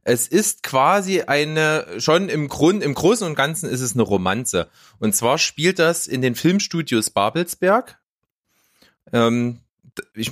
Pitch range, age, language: 115-160 Hz, 30-49, German